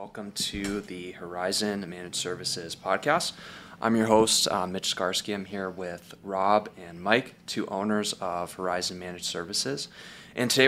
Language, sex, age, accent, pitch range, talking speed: English, male, 20-39, American, 95-110 Hz, 150 wpm